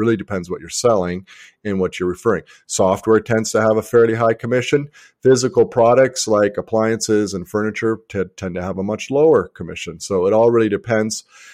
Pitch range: 100-130 Hz